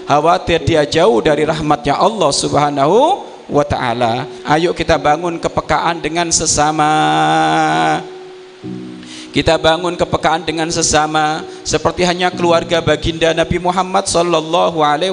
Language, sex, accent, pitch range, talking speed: Indonesian, male, native, 140-175 Hz, 105 wpm